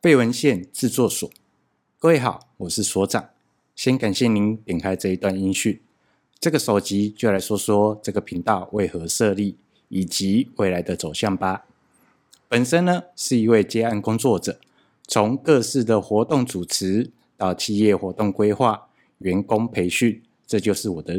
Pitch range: 95-120 Hz